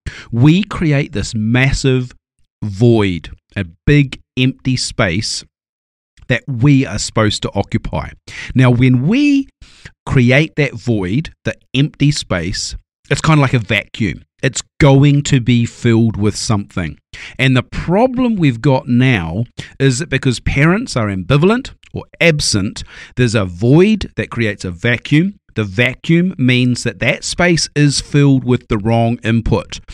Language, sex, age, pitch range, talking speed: English, male, 40-59, 110-140 Hz, 140 wpm